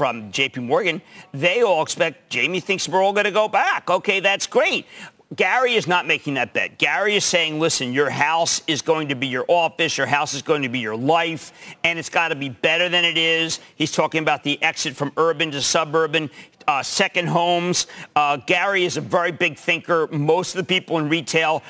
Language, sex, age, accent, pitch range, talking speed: English, male, 50-69, American, 150-195 Hz, 205 wpm